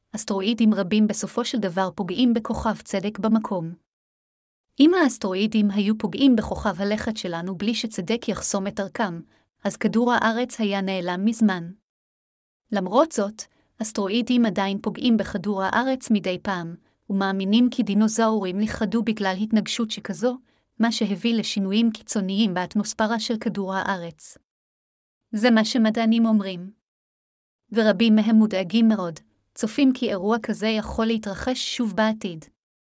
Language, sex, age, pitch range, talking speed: Hebrew, female, 30-49, 195-230 Hz, 120 wpm